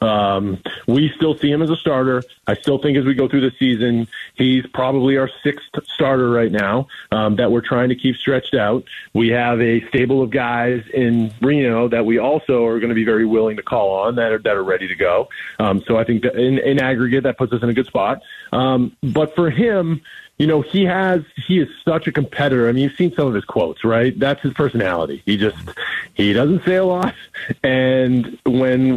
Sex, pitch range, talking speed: male, 120-155 Hz, 220 wpm